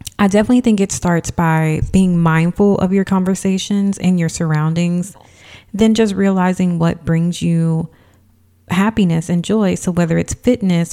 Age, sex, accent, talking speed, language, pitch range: 30-49, female, American, 150 wpm, English, 165-200 Hz